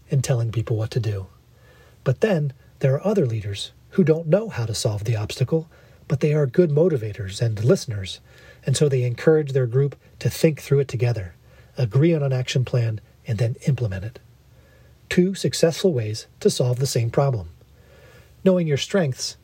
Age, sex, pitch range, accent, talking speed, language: 40-59, male, 115-150 Hz, American, 180 wpm, English